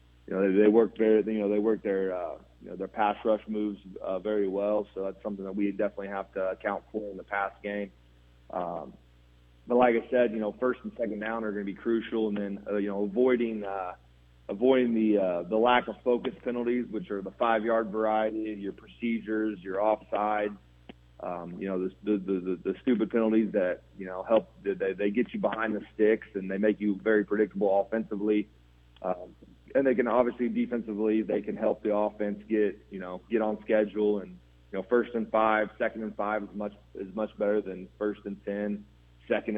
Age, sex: 30-49, male